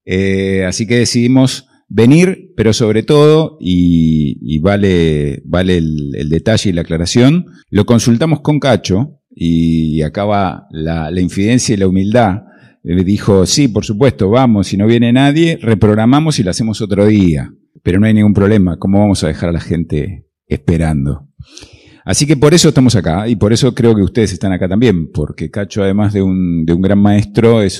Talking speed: 185 wpm